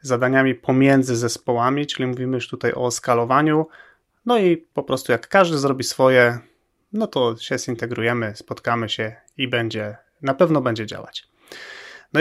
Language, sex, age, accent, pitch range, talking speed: Polish, male, 30-49, native, 120-140 Hz, 150 wpm